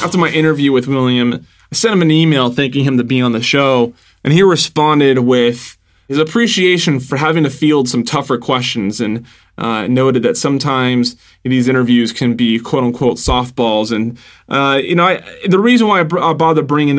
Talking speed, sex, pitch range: 190 wpm, male, 120-155 Hz